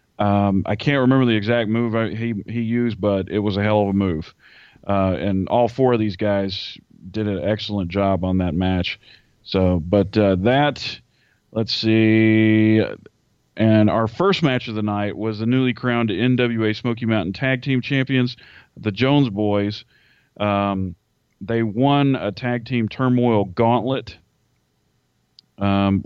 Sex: male